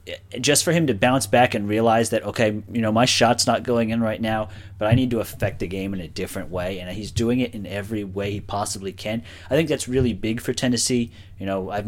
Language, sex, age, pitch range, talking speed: English, male, 30-49, 95-120 Hz, 255 wpm